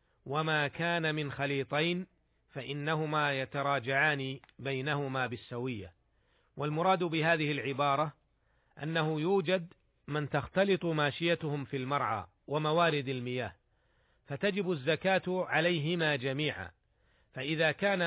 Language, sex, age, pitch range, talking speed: Arabic, male, 40-59, 140-165 Hz, 85 wpm